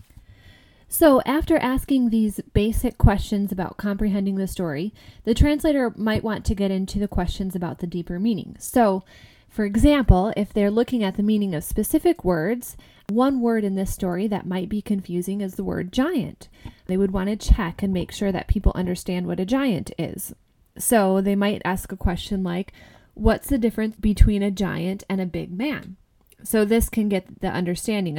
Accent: American